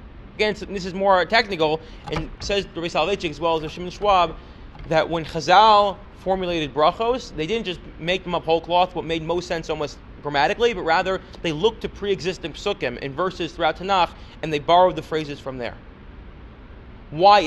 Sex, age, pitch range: male, 30-49, 155-190 Hz